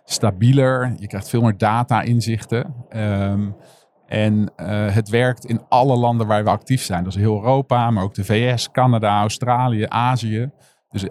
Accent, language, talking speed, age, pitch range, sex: Dutch, Dutch, 160 wpm, 50-69, 105-120 Hz, male